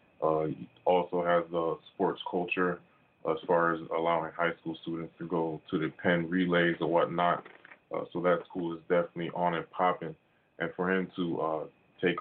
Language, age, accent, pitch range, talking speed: English, 20-39, American, 85-95 Hz, 180 wpm